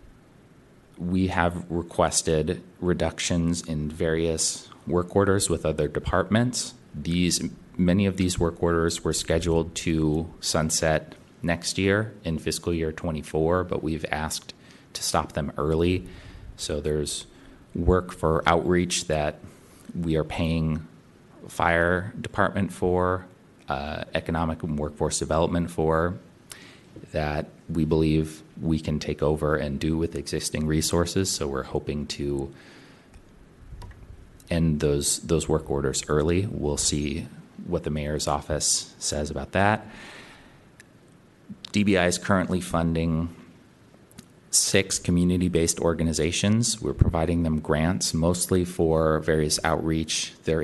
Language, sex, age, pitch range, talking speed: English, male, 30-49, 75-90 Hz, 115 wpm